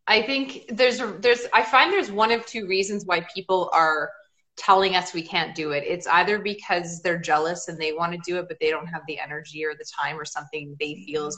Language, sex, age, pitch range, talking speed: English, female, 20-39, 155-210 Hz, 235 wpm